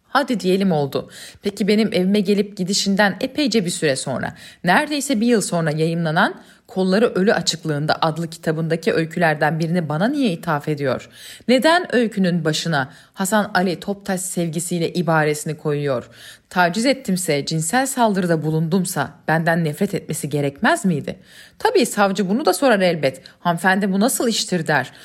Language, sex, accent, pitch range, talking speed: Turkish, female, native, 155-205 Hz, 140 wpm